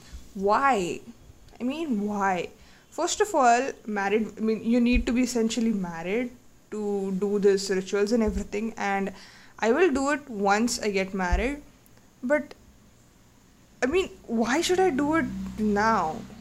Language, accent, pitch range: English, Indian, 200-265 Hz